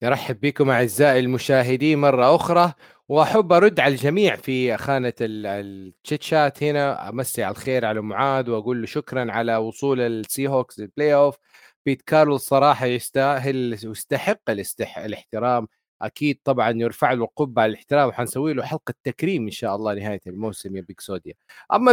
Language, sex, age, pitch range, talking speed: Arabic, male, 30-49, 120-155 Hz, 140 wpm